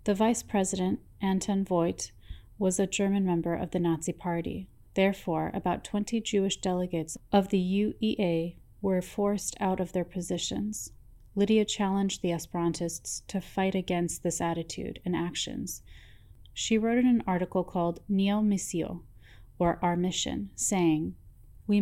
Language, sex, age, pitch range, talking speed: English, female, 30-49, 160-195 Hz, 140 wpm